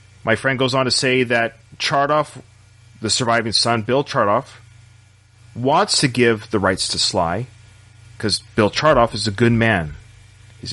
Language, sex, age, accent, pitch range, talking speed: English, male, 40-59, American, 105-130 Hz, 155 wpm